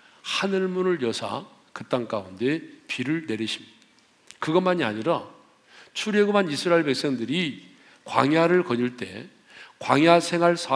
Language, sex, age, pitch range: Korean, male, 40-59, 135-190 Hz